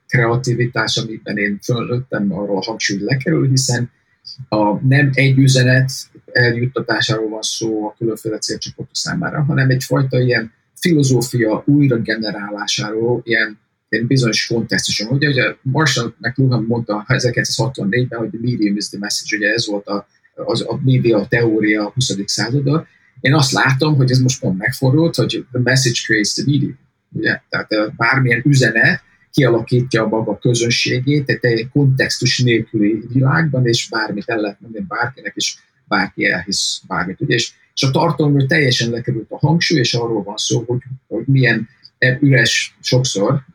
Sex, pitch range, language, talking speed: male, 110-135 Hz, Hungarian, 145 wpm